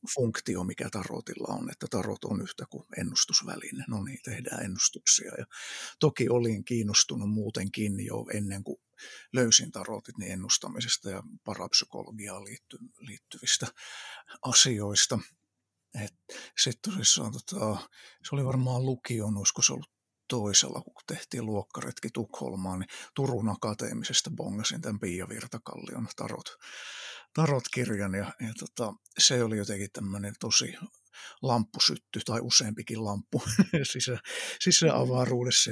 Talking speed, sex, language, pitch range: 110 wpm, male, Finnish, 105-125 Hz